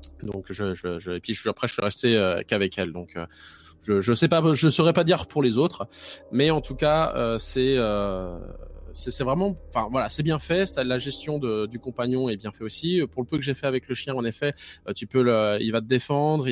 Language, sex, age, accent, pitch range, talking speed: French, male, 20-39, French, 100-135 Hz, 255 wpm